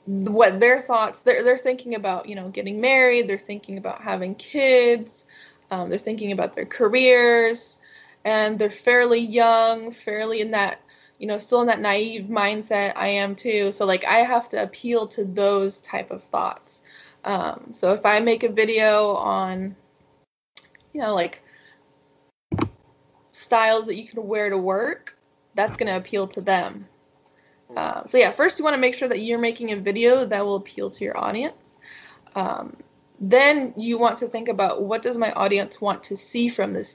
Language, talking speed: English, 180 wpm